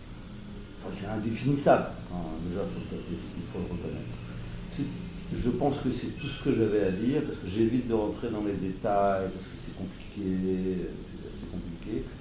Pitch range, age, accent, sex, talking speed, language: 85-110 Hz, 50-69, French, male, 160 wpm, French